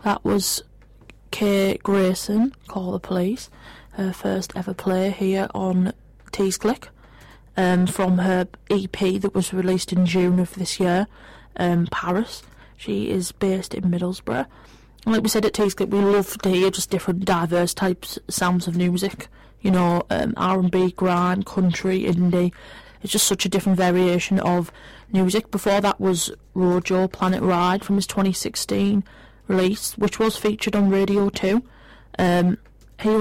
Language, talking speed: English, 155 wpm